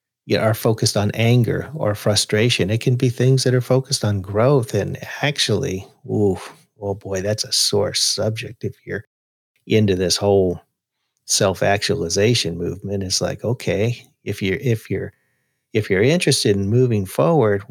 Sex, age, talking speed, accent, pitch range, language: male, 40-59, 150 wpm, American, 100-135 Hz, English